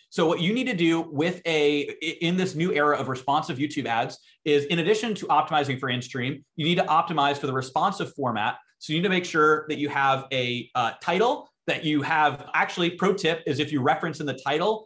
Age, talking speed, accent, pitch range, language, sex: 30-49, 225 wpm, American, 140-170 Hz, English, male